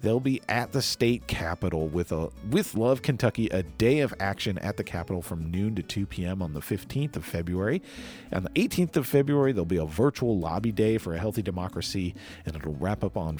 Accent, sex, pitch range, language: American, male, 90-125 Hz, English